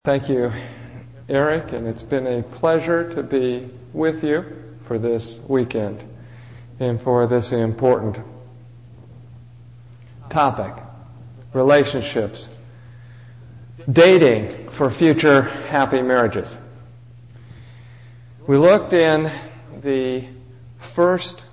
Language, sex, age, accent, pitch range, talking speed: English, male, 50-69, American, 120-135 Hz, 85 wpm